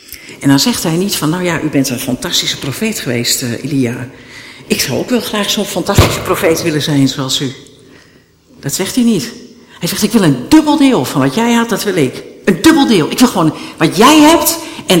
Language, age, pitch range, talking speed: Dutch, 60-79, 165-245 Hz, 225 wpm